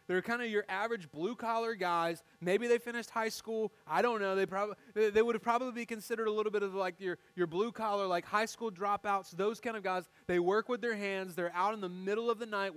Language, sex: English, male